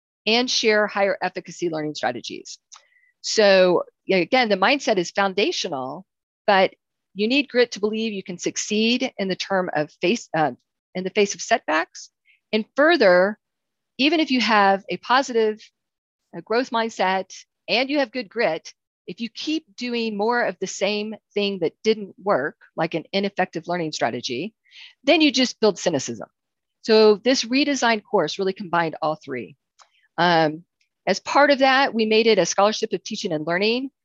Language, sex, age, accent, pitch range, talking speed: English, female, 40-59, American, 175-230 Hz, 160 wpm